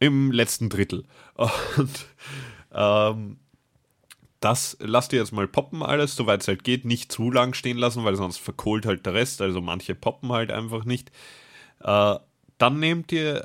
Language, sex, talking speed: German, male, 160 wpm